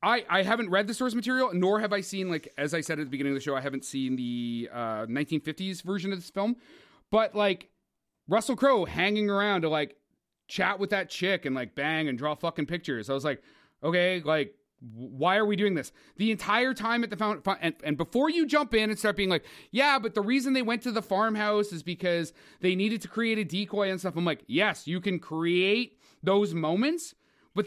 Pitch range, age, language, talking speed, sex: 170-255 Hz, 30-49, English, 220 wpm, male